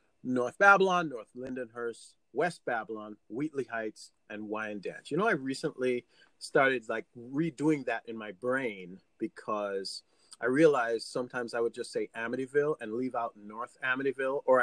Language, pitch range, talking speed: English, 120-155 Hz, 150 wpm